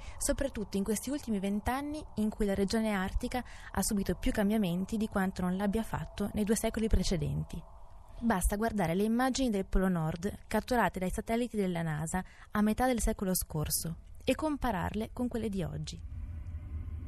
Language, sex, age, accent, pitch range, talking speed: Italian, female, 20-39, native, 160-220 Hz, 160 wpm